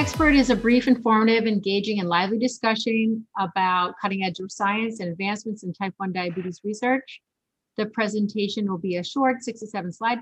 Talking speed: 180 wpm